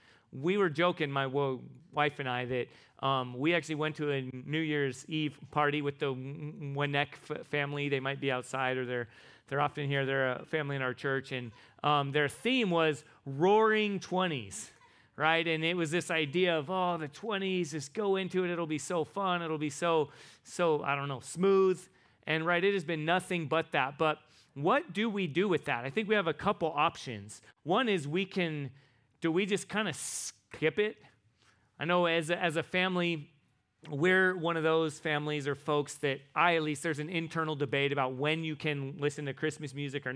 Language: English